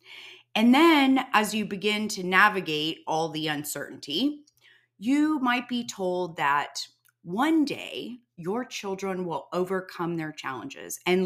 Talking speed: 130 wpm